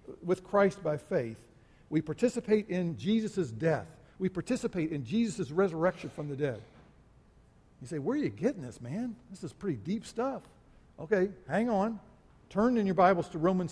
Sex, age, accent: male, 50-69, American